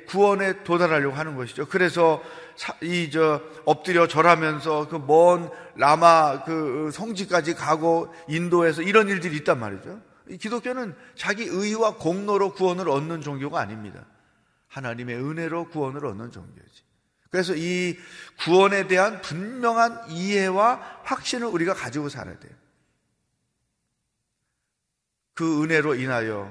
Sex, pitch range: male, 140-175 Hz